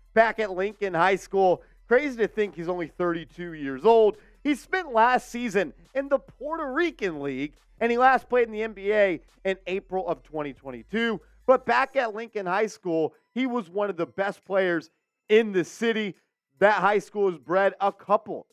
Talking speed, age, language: 180 wpm, 40-59, English